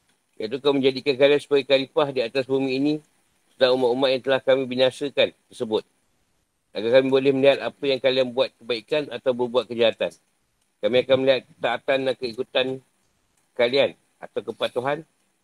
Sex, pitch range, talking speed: male, 125-145 Hz, 150 wpm